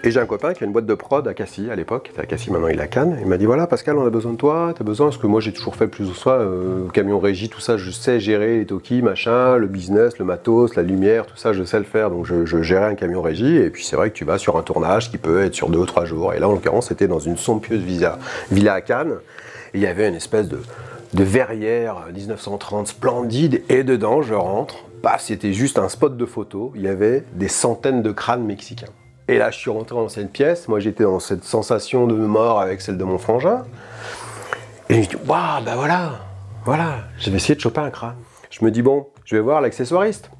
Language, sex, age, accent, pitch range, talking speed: French, male, 30-49, French, 105-140 Hz, 260 wpm